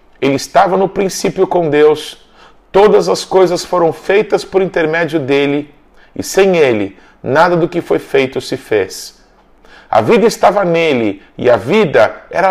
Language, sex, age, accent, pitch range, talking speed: Portuguese, male, 40-59, Brazilian, 150-190 Hz, 155 wpm